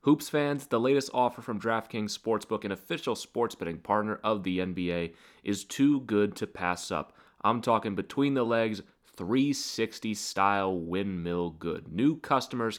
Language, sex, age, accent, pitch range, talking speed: English, male, 30-49, American, 90-115 Hz, 150 wpm